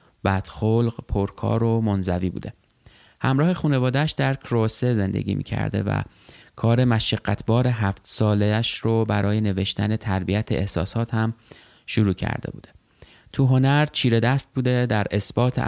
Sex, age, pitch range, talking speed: male, 20-39, 100-120 Hz, 125 wpm